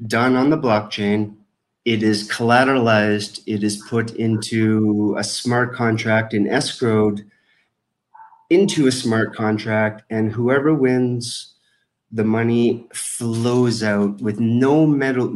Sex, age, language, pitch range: male, 30-49, English, 105-120 Hz